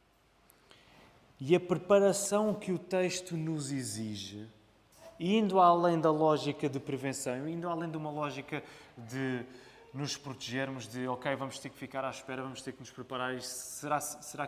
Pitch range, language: 135-170 Hz, Portuguese